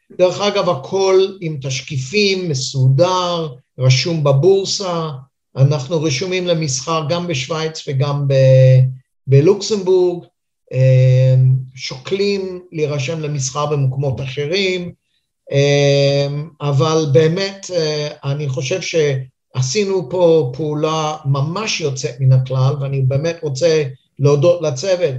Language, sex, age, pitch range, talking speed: Hebrew, male, 50-69, 135-175 Hz, 90 wpm